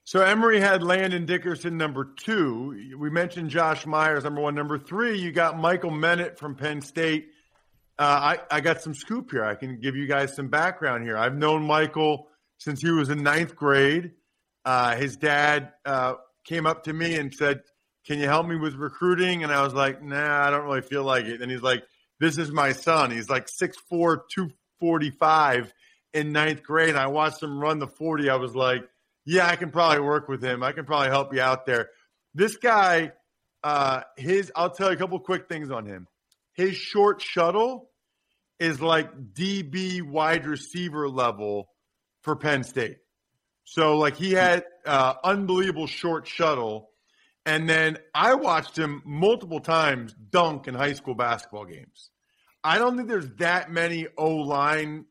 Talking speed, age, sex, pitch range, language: 175 wpm, 40-59, male, 140-170 Hz, English